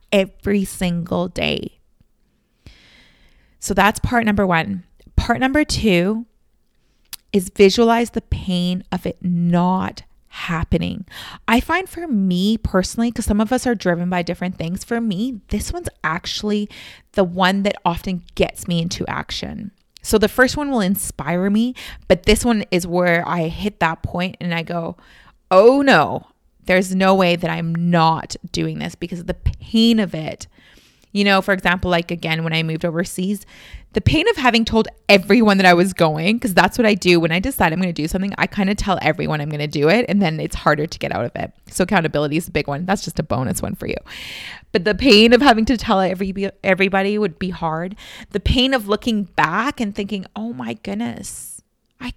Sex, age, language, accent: female, 30-49, English, American